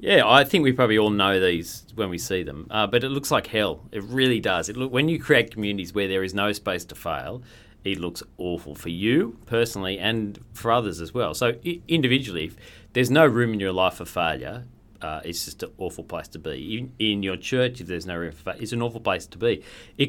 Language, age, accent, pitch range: English, 40-59, Australian, 100-125 Hz